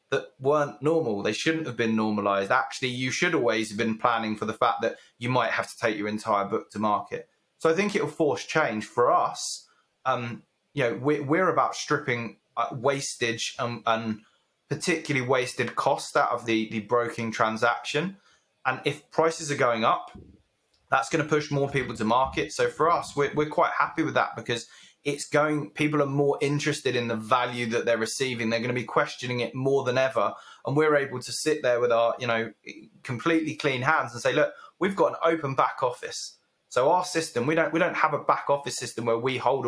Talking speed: 210 wpm